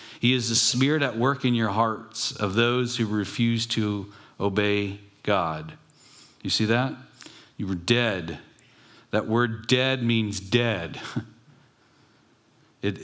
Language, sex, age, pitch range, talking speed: English, male, 50-69, 110-130 Hz, 130 wpm